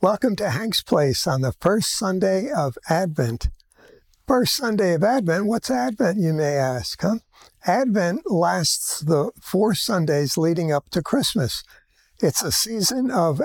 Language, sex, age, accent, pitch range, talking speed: English, male, 60-79, American, 160-215 Hz, 145 wpm